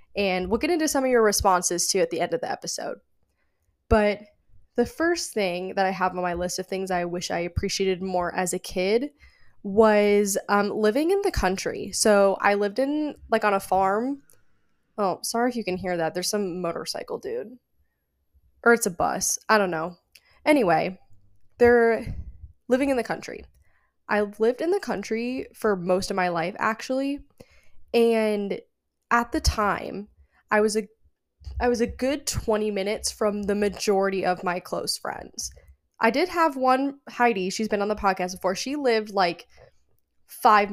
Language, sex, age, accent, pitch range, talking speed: English, female, 10-29, American, 185-240 Hz, 175 wpm